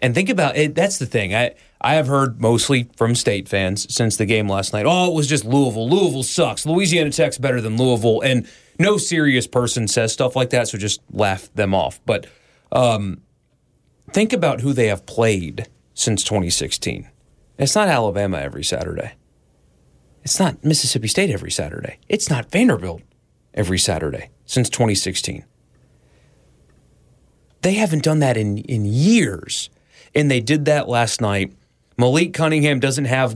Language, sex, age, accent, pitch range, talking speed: English, male, 30-49, American, 105-145 Hz, 160 wpm